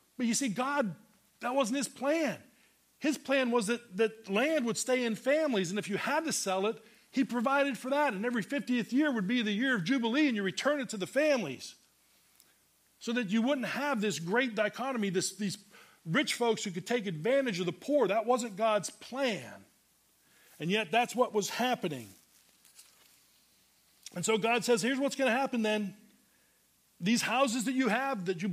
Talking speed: 190 wpm